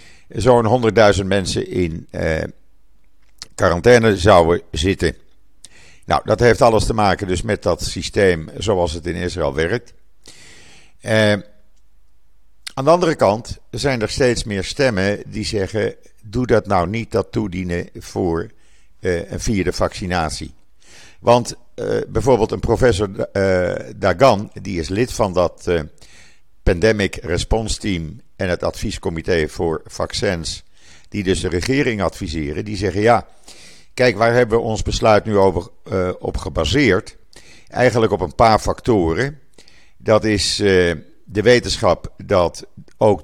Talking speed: 135 wpm